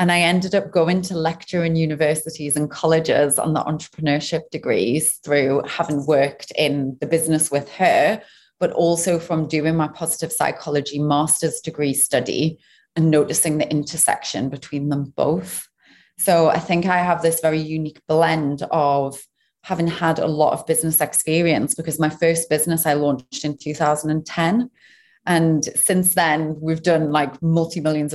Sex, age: female, 30-49